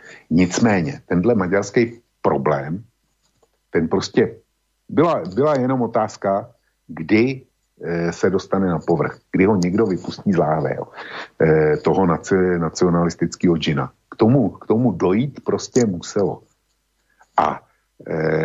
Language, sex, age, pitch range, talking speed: Slovak, male, 50-69, 85-110 Hz, 105 wpm